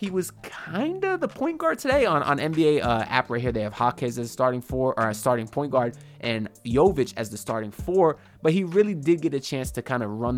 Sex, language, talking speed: male, English, 250 wpm